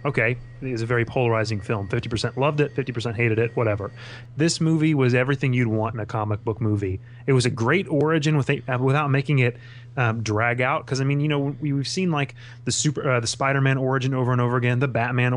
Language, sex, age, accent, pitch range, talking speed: English, male, 20-39, American, 115-135 Hz, 220 wpm